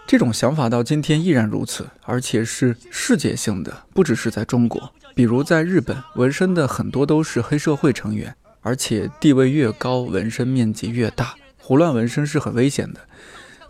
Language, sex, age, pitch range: Chinese, male, 20-39, 115-140 Hz